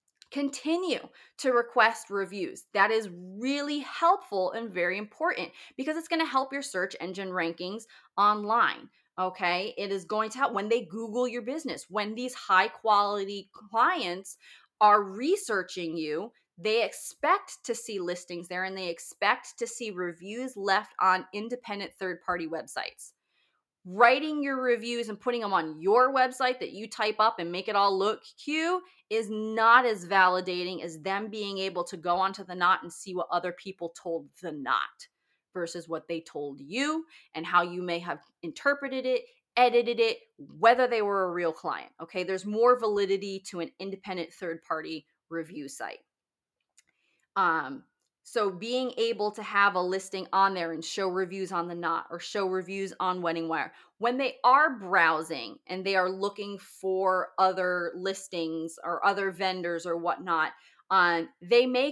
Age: 20-39